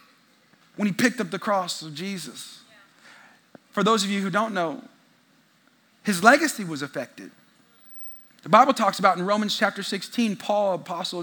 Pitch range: 230-295 Hz